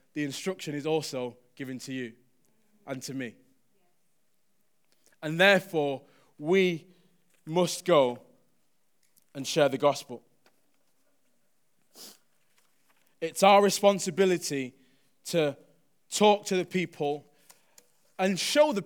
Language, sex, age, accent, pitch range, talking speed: English, male, 20-39, British, 150-190 Hz, 95 wpm